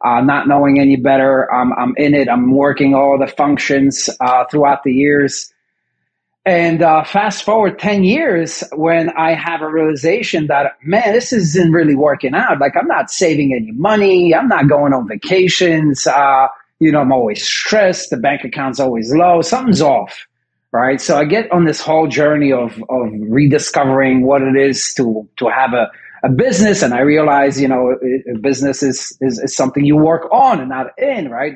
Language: English